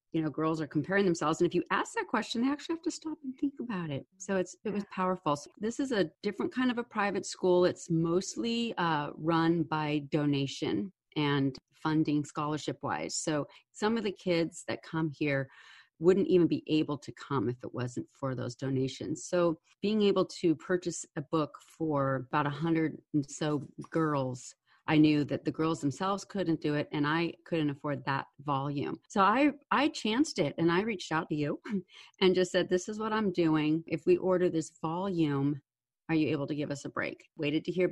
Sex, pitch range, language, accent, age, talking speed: female, 150-180 Hz, English, American, 40-59, 205 wpm